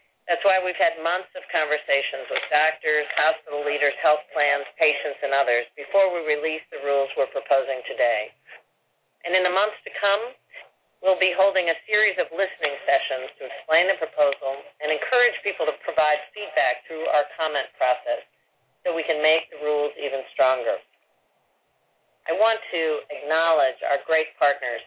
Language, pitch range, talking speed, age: English, 140-190 Hz, 160 wpm, 50-69